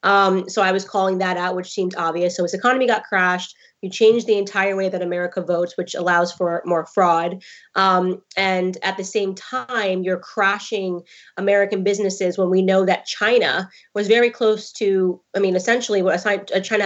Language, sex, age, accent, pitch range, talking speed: English, female, 20-39, American, 185-210 Hz, 185 wpm